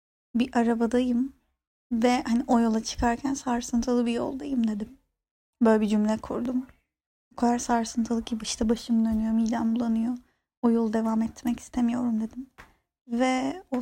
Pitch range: 225-260 Hz